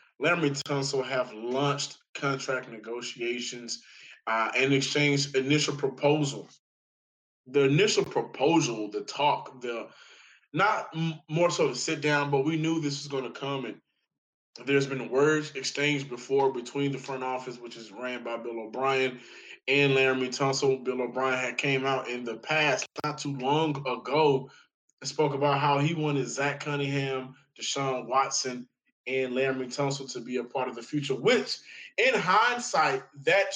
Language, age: English, 20-39